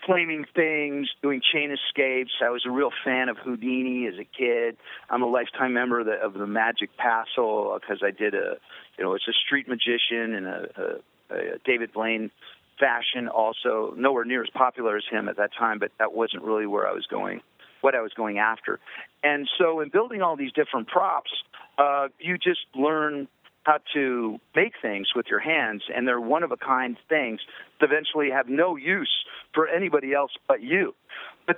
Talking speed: 185 wpm